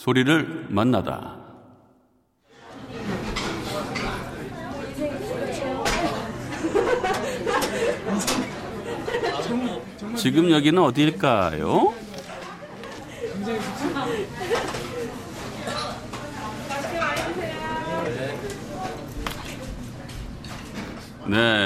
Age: 60-79